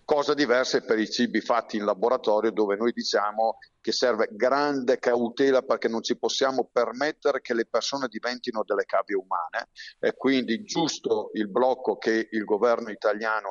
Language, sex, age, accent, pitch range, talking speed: Italian, male, 50-69, native, 115-155 Hz, 165 wpm